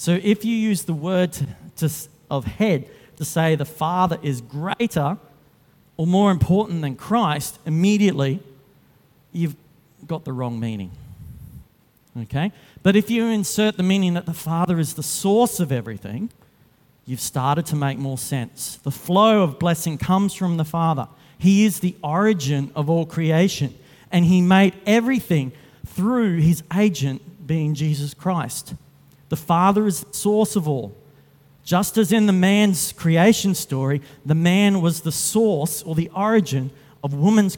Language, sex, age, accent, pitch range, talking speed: English, male, 40-59, Australian, 140-180 Hz, 150 wpm